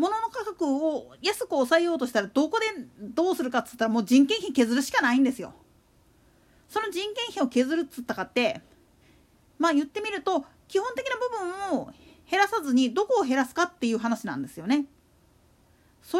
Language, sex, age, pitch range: Japanese, female, 40-59, 245-380 Hz